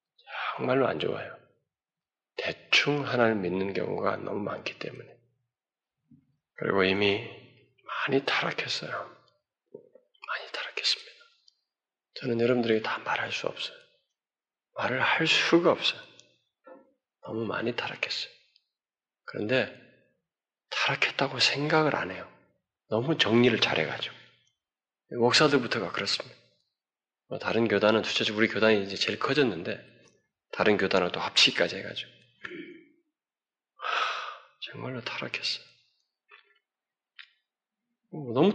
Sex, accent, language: male, native, Korean